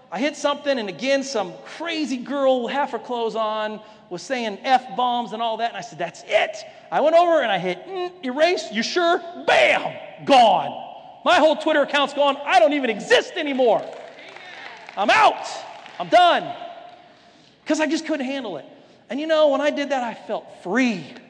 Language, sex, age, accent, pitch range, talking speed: English, male, 40-59, American, 210-315 Hz, 185 wpm